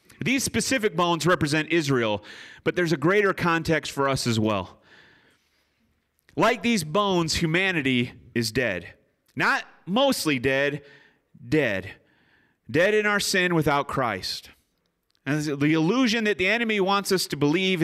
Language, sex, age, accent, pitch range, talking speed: English, male, 30-49, American, 125-170 Hz, 135 wpm